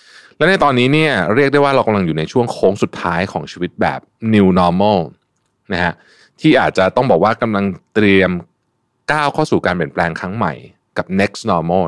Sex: male